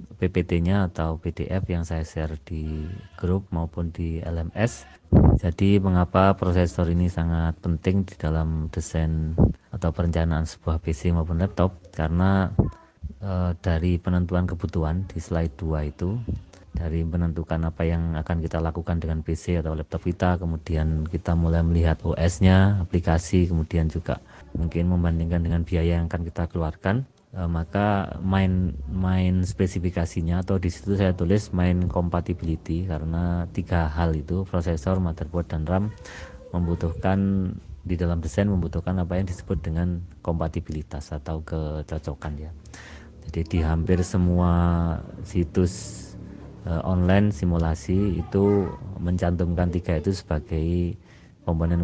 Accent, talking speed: native, 125 wpm